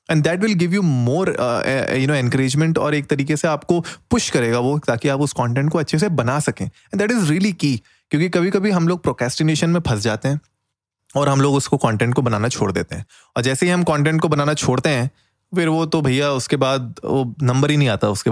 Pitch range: 120-155 Hz